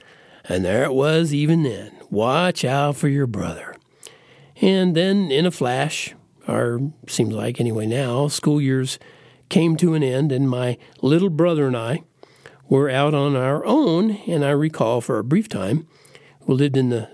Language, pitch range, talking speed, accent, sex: English, 130-160 Hz, 170 wpm, American, male